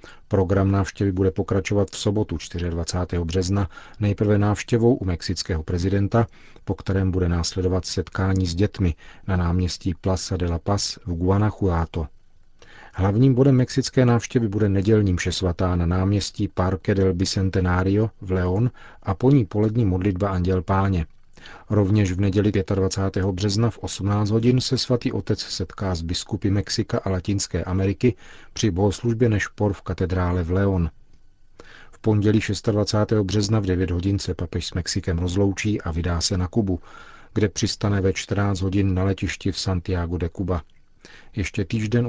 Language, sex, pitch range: Czech, male, 90-105 Hz